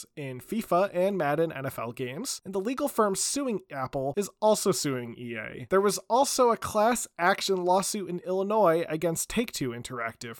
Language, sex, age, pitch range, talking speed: English, male, 30-49, 130-185 Hz, 160 wpm